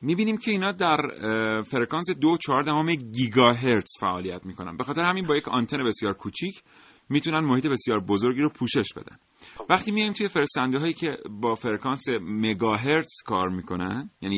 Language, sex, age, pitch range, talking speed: Persian, male, 40-59, 105-150 Hz, 160 wpm